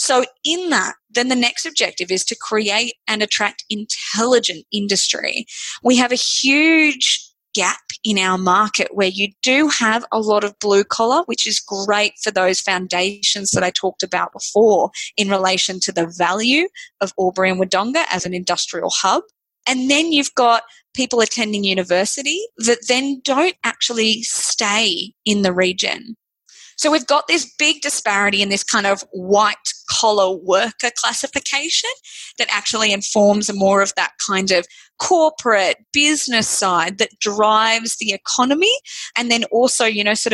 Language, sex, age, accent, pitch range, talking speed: English, female, 20-39, Australian, 200-275 Hz, 155 wpm